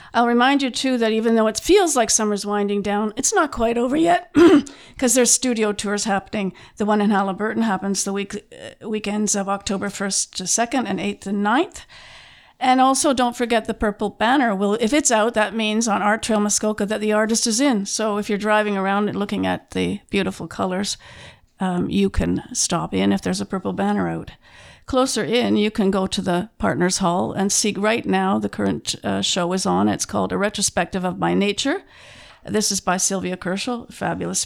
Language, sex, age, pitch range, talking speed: English, female, 50-69, 185-225 Hz, 205 wpm